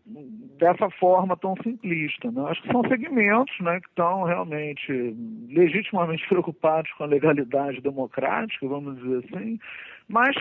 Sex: male